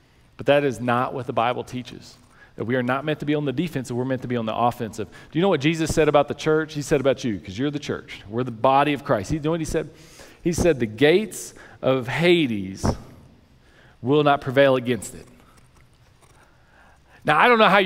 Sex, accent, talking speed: male, American, 230 wpm